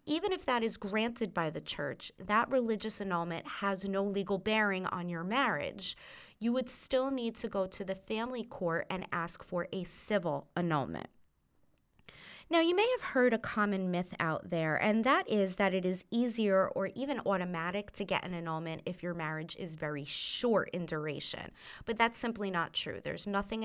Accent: American